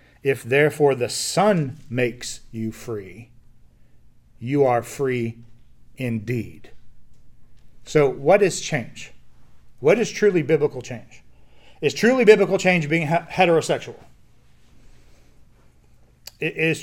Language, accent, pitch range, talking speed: English, American, 115-155 Hz, 95 wpm